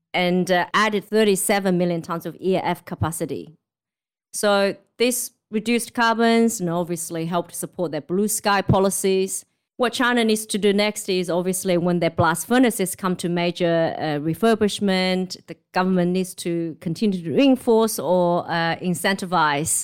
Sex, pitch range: female, 165-200 Hz